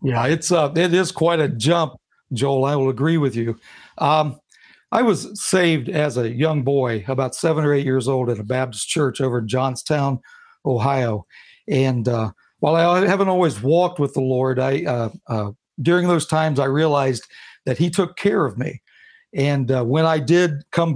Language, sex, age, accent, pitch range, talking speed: English, male, 60-79, American, 130-170 Hz, 190 wpm